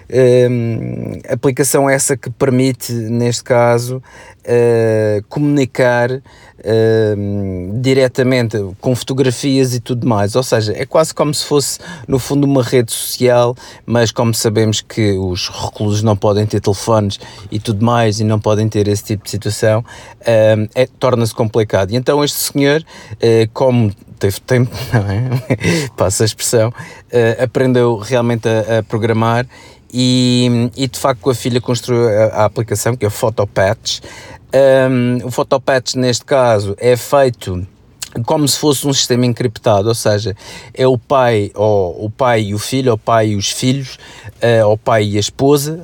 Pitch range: 110-130 Hz